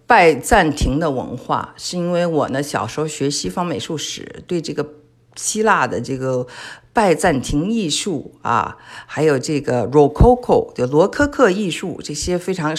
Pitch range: 130-160 Hz